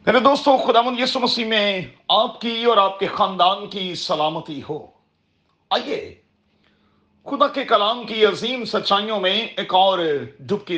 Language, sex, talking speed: Urdu, male, 145 wpm